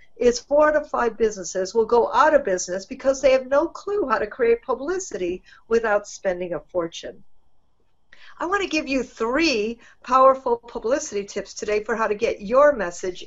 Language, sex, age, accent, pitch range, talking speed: English, female, 50-69, American, 215-285 Hz, 180 wpm